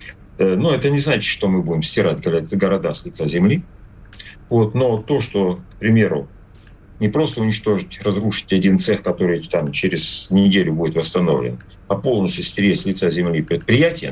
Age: 40-59